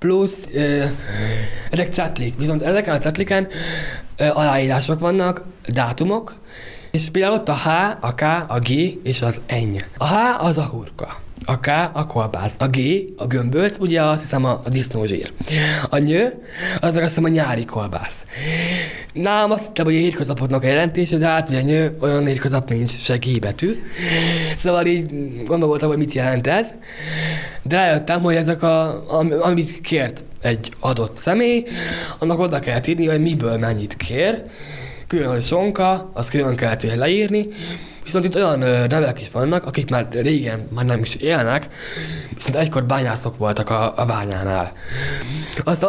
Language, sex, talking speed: Hungarian, male, 155 wpm